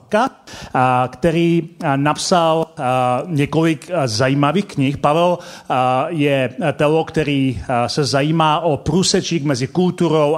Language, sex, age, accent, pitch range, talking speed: Czech, male, 40-59, native, 130-165 Hz, 85 wpm